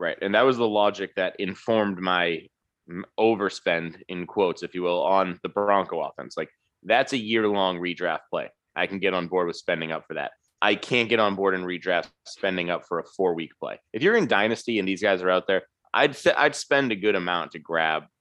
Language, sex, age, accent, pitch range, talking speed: English, male, 30-49, American, 90-105 Hz, 220 wpm